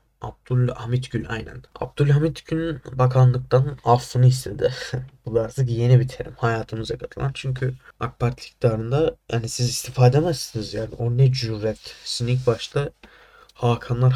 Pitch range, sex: 115-135 Hz, male